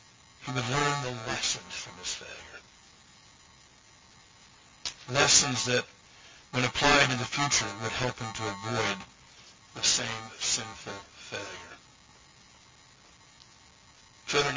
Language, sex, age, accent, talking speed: English, male, 60-79, American, 105 wpm